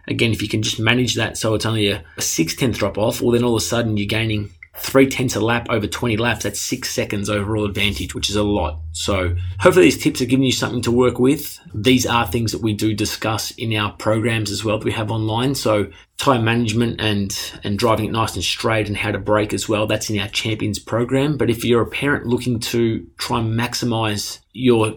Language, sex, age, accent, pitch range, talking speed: English, male, 20-39, Australian, 105-125 Hz, 235 wpm